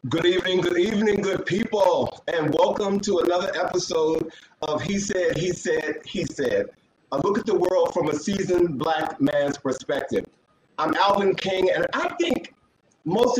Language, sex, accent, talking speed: English, male, American, 160 wpm